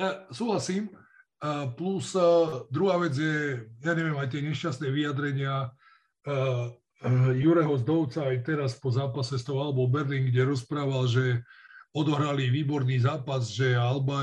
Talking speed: 125 wpm